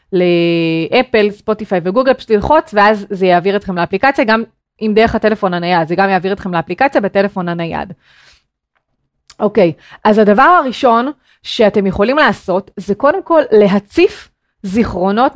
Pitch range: 195-265 Hz